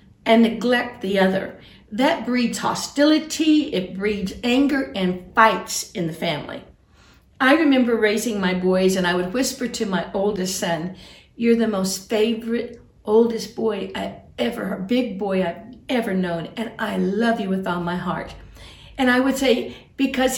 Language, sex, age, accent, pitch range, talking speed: English, female, 50-69, American, 210-270 Hz, 160 wpm